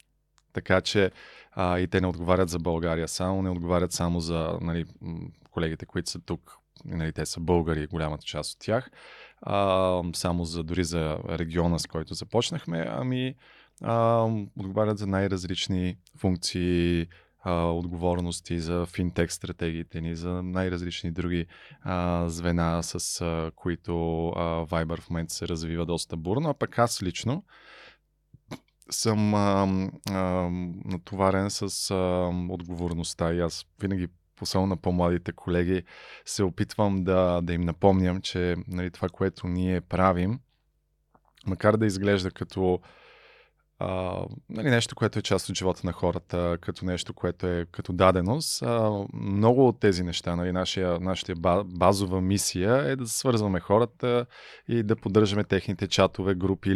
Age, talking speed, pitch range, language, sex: 20-39, 135 wpm, 85-100 Hz, Bulgarian, male